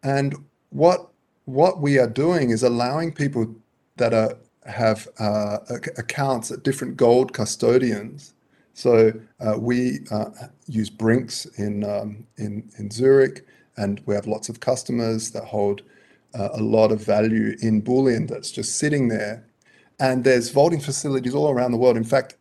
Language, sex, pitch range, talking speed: English, male, 115-145 Hz, 155 wpm